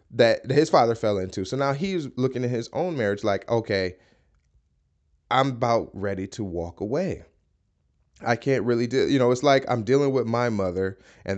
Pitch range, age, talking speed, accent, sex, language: 95-120 Hz, 20-39, 185 wpm, American, male, English